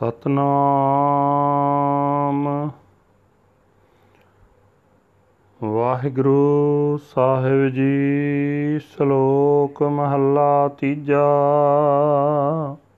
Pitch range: 120-145 Hz